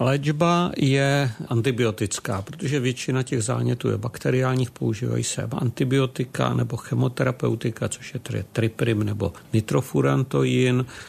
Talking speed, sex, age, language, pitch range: 105 wpm, male, 50-69, Czech, 105-125 Hz